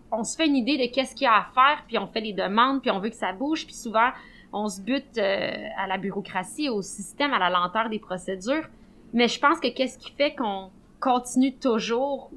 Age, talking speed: 20-39, 240 wpm